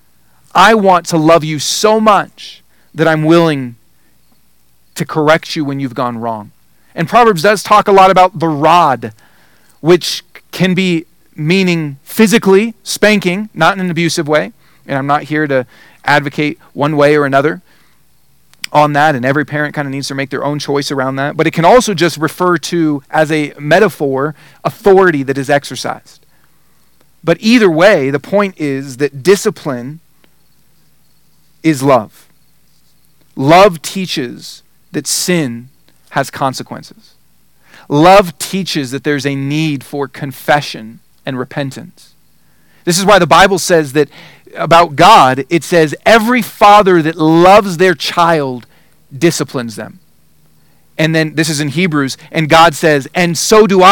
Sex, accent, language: male, American, English